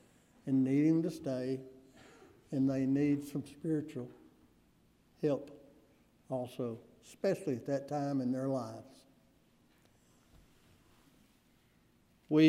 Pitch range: 125-145 Hz